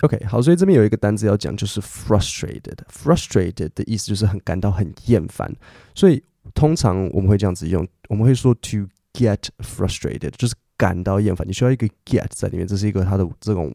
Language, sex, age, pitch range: Chinese, male, 20-39, 95-120 Hz